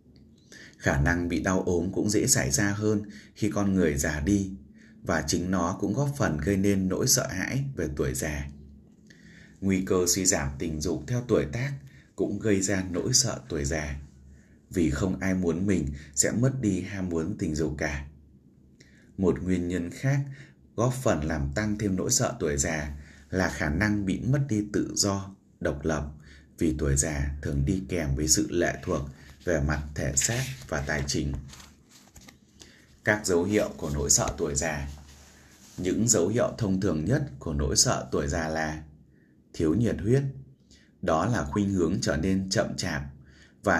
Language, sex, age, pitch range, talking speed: Vietnamese, male, 20-39, 70-100 Hz, 180 wpm